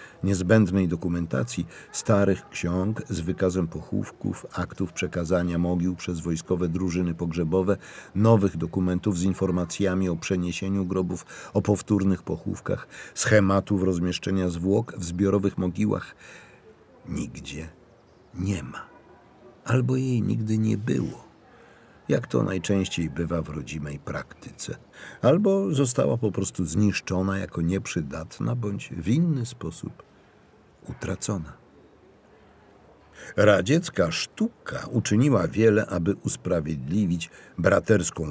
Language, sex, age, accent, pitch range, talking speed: Polish, male, 50-69, native, 90-110 Hz, 100 wpm